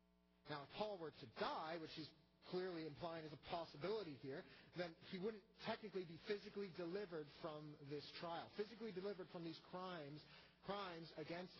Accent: American